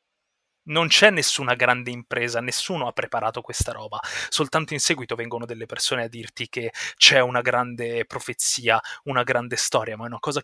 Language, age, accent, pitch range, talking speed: Italian, 30-49, native, 120-145 Hz, 175 wpm